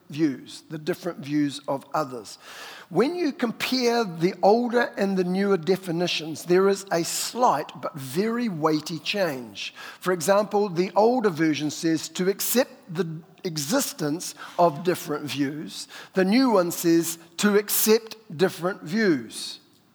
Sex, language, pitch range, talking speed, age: male, English, 170-225 Hz, 130 wpm, 50-69